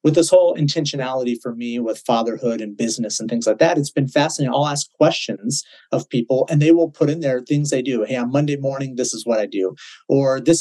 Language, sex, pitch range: English, male, 125-160 Hz